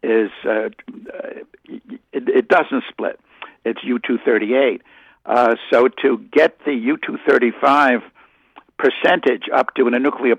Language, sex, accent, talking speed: English, male, American, 120 wpm